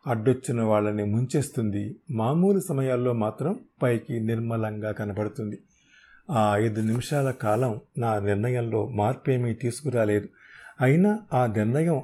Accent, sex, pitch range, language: native, male, 110-145 Hz, Telugu